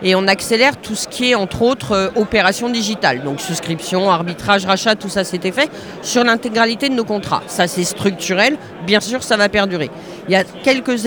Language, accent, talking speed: French, French, 200 wpm